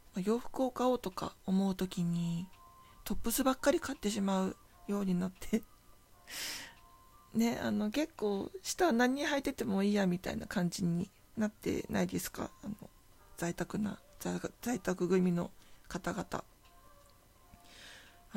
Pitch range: 160-220 Hz